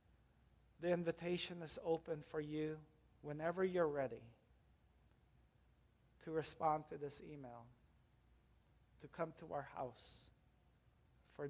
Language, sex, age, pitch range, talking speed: English, male, 50-69, 155-215 Hz, 105 wpm